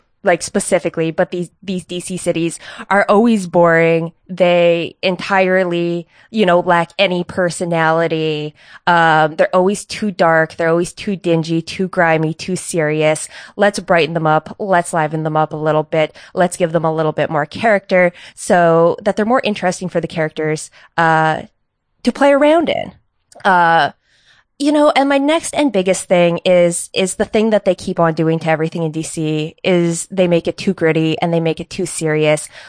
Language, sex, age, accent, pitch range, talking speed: English, female, 20-39, American, 160-185 Hz, 175 wpm